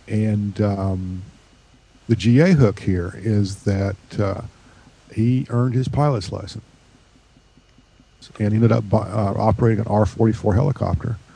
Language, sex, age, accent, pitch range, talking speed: English, male, 50-69, American, 100-120 Hz, 125 wpm